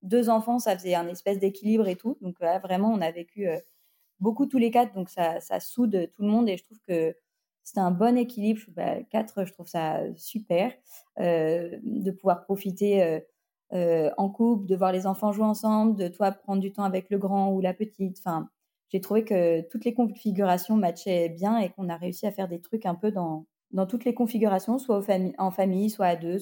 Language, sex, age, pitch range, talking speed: French, female, 20-39, 175-215 Hz, 225 wpm